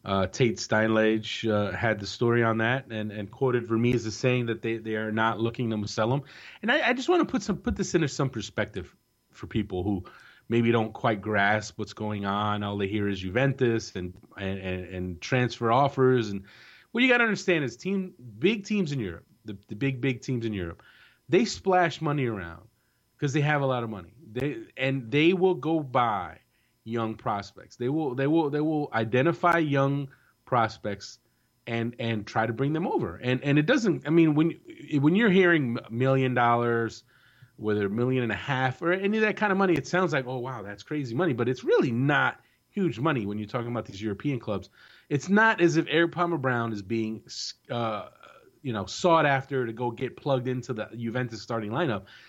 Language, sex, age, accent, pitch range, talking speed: English, male, 30-49, American, 110-150 Hz, 210 wpm